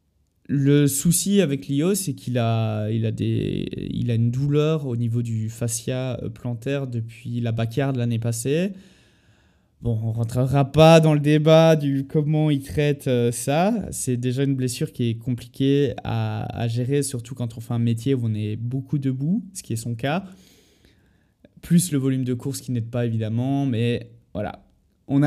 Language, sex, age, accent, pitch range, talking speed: French, male, 20-39, French, 115-150 Hz, 180 wpm